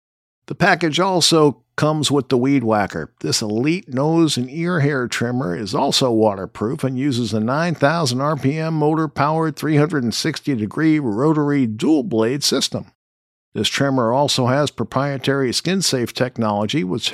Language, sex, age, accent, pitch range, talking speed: English, male, 50-69, American, 115-160 Hz, 140 wpm